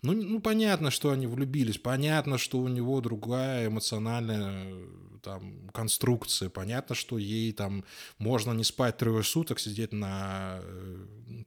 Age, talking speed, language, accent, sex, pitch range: 20-39, 135 wpm, Russian, native, male, 110-160 Hz